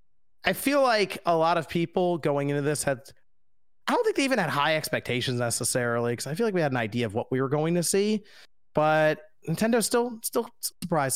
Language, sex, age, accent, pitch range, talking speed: English, male, 30-49, American, 125-170 Hz, 215 wpm